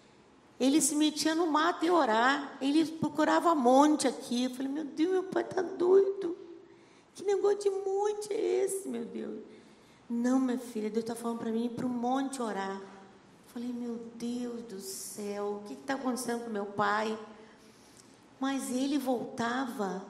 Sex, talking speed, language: female, 165 wpm, Portuguese